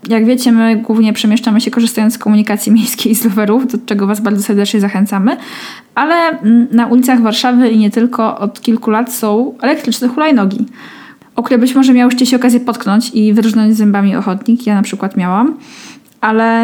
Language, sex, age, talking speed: Polish, female, 10-29, 175 wpm